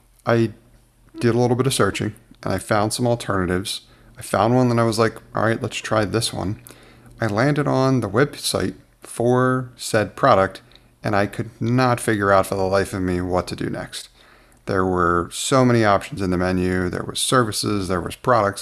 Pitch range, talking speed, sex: 95-120 Hz, 200 wpm, male